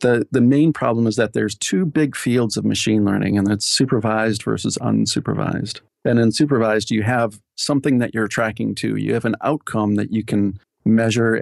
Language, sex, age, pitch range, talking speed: English, male, 40-59, 105-120 Hz, 190 wpm